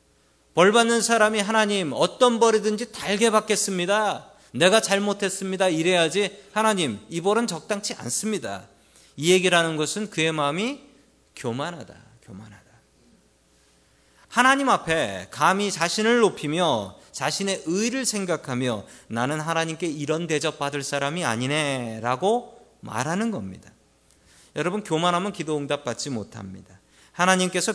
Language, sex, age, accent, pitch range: Korean, male, 40-59, native, 120-195 Hz